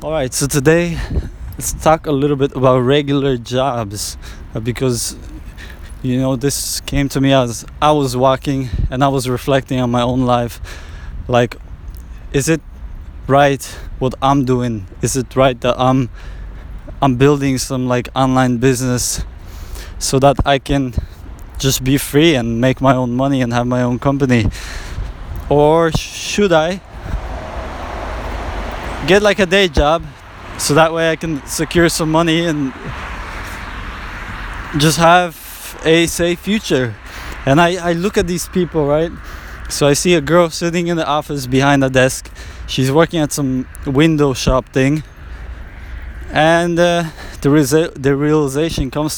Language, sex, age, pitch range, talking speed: English, male, 20-39, 95-155 Hz, 145 wpm